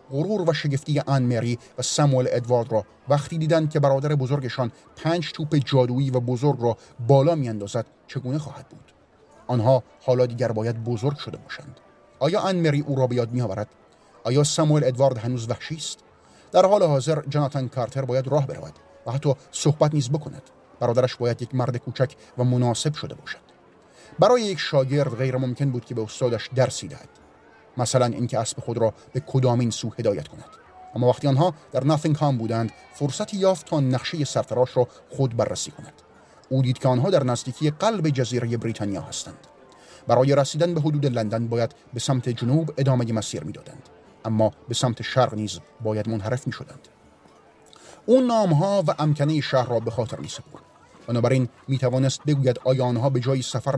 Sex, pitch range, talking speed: male, 120-145 Hz, 170 wpm